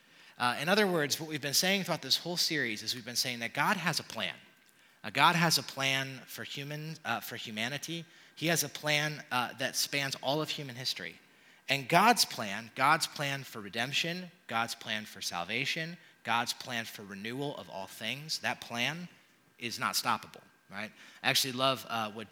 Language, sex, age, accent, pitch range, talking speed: English, male, 30-49, American, 115-150 Hz, 190 wpm